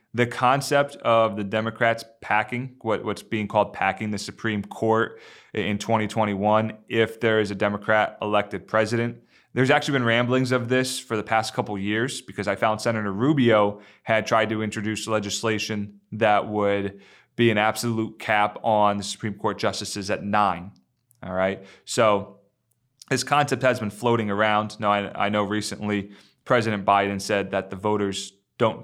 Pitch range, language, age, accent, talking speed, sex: 100-120 Hz, English, 30-49, American, 165 wpm, male